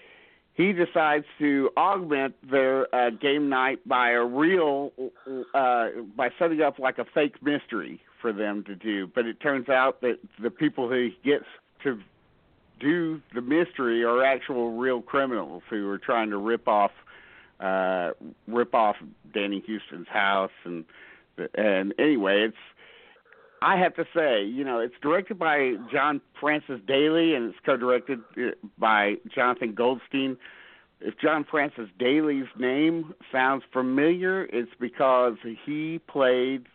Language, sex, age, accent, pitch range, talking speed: English, male, 50-69, American, 110-140 Hz, 135 wpm